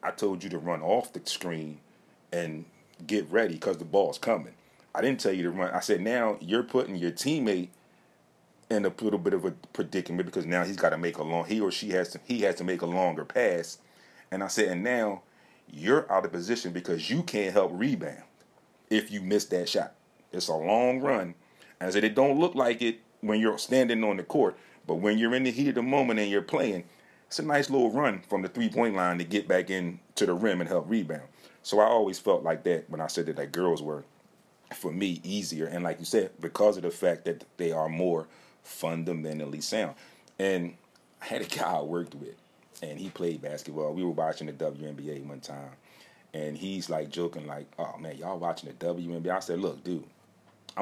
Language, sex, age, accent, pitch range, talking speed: English, male, 30-49, American, 80-105 Hz, 225 wpm